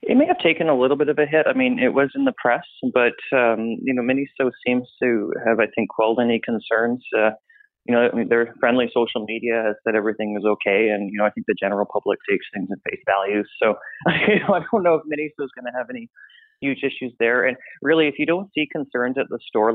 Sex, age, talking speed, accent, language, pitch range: male, 30-49, 240 wpm, American, English, 110-135 Hz